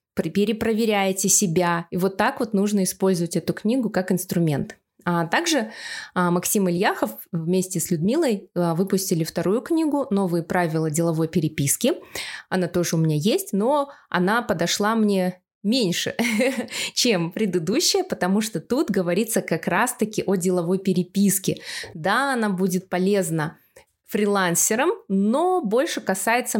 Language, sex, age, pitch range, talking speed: Russian, female, 20-39, 175-220 Hz, 120 wpm